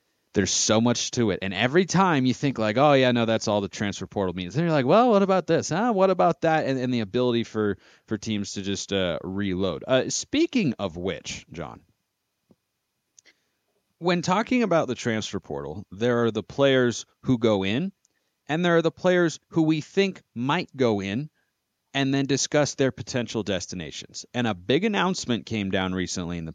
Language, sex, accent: English, male, American